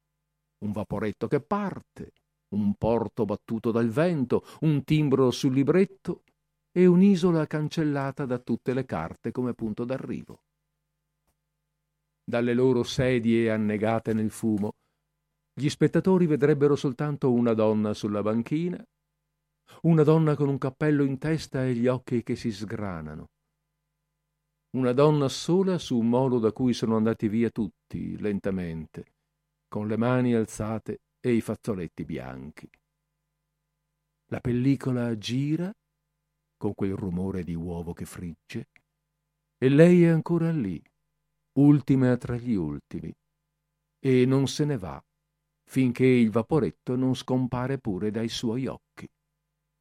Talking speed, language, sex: 125 wpm, Italian, male